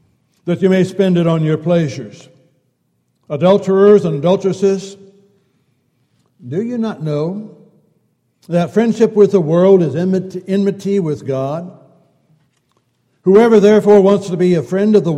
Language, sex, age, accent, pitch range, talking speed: English, male, 60-79, American, 135-185 Hz, 130 wpm